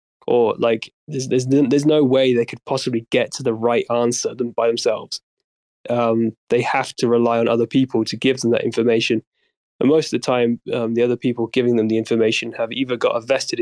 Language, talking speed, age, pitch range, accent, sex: English, 215 wpm, 20-39, 115-125 Hz, British, male